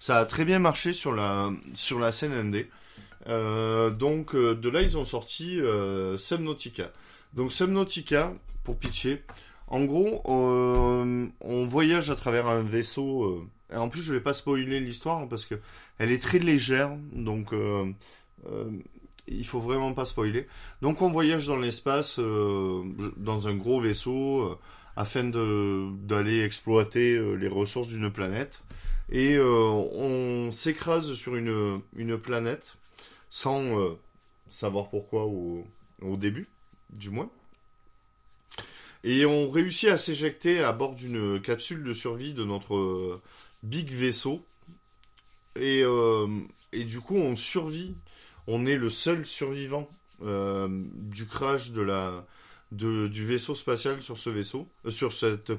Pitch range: 105-135 Hz